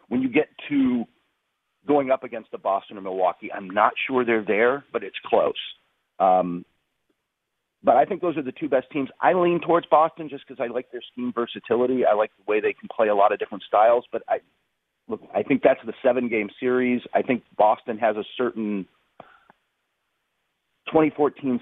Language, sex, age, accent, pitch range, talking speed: English, male, 40-59, American, 105-150 Hz, 190 wpm